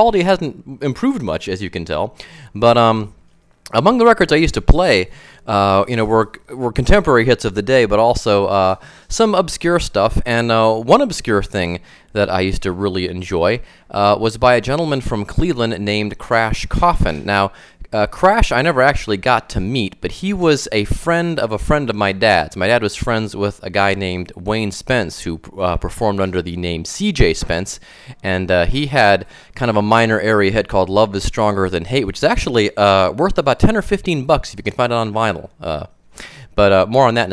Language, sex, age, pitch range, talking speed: English, male, 30-49, 100-130 Hz, 210 wpm